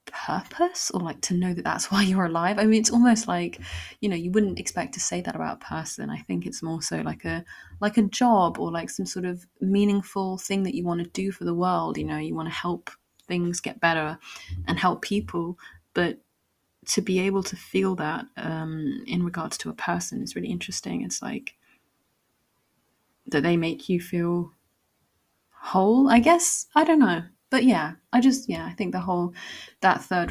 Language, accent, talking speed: English, British, 200 wpm